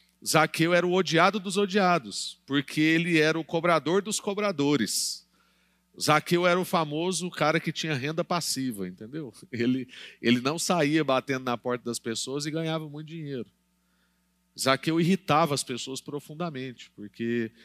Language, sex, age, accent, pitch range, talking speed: Portuguese, male, 40-59, Brazilian, 120-160 Hz, 145 wpm